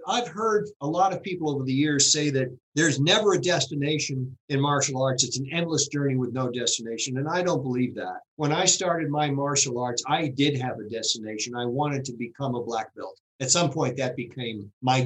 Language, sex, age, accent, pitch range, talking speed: English, male, 50-69, American, 125-165 Hz, 215 wpm